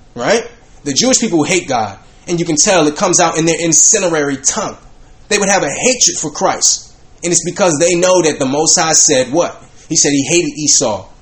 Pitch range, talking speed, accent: 150-210 Hz, 210 wpm, American